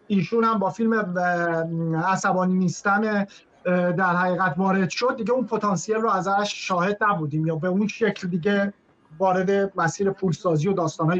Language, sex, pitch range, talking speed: Persian, male, 190-240 Hz, 150 wpm